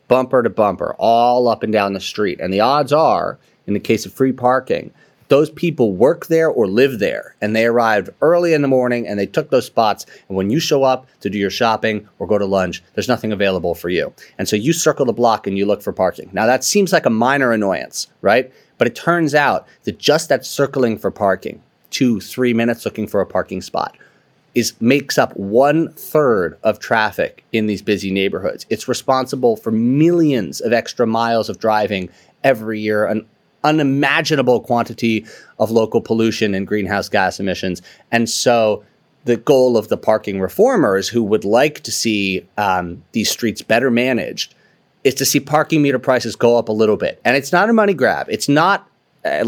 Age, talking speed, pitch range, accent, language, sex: 30-49, 195 wpm, 105-130 Hz, American, English, male